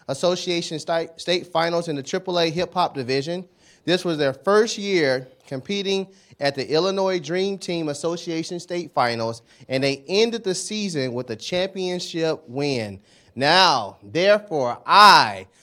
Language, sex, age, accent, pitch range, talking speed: English, male, 30-49, American, 165-240 Hz, 135 wpm